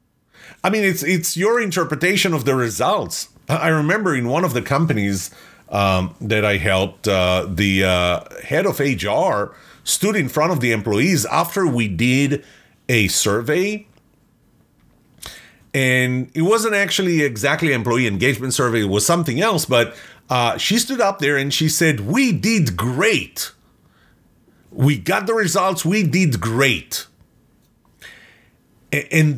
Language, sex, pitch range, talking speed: English, male, 125-185 Hz, 140 wpm